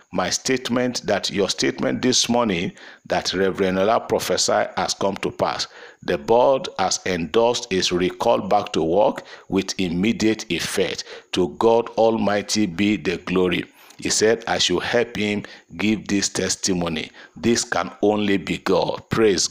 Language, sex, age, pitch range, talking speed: English, male, 50-69, 95-120 Hz, 150 wpm